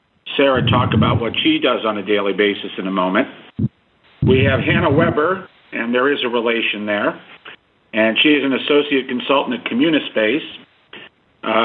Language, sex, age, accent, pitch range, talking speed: English, male, 50-69, American, 115-145 Hz, 165 wpm